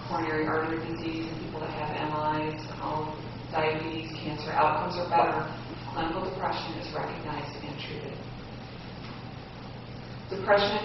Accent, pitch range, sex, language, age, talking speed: American, 155-195 Hz, female, English, 40-59, 110 wpm